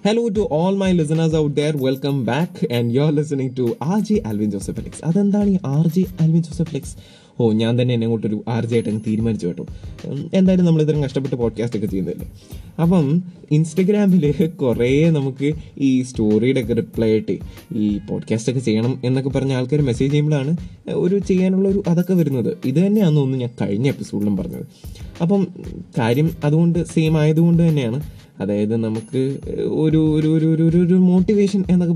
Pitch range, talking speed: 115-165 Hz, 160 wpm